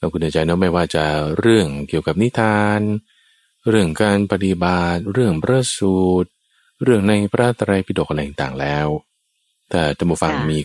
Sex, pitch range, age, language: male, 75-105 Hz, 20-39, Thai